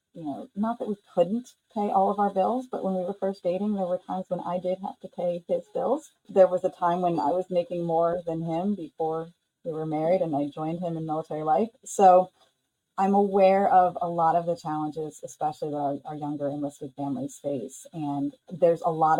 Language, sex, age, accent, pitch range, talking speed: English, female, 30-49, American, 160-190 Hz, 220 wpm